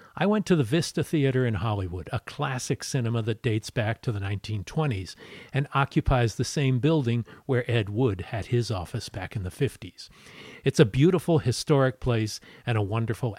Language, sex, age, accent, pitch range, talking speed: English, male, 50-69, American, 105-140 Hz, 180 wpm